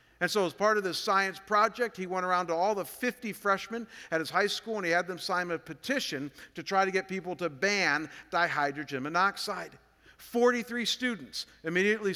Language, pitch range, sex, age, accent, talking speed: English, 180-220 Hz, male, 50-69, American, 190 wpm